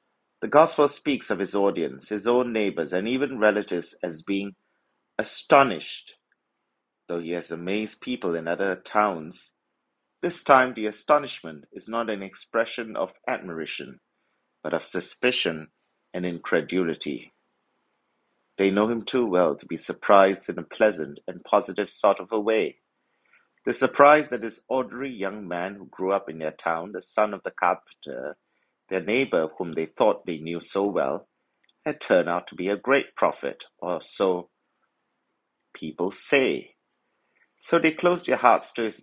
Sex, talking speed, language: male, 155 wpm, English